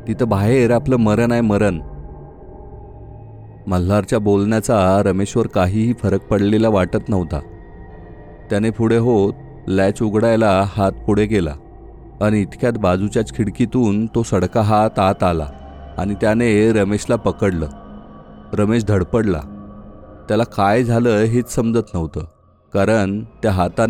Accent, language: native, Marathi